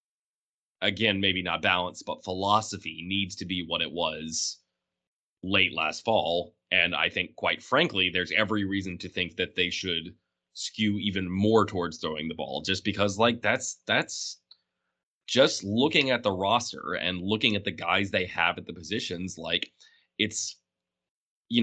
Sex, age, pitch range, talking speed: male, 20-39, 90-105 Hz, 160 wpm